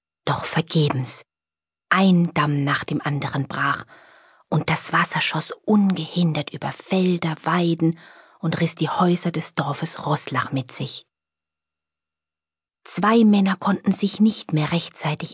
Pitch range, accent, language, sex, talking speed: 130-175 Hz, German, German, female, 125 wpm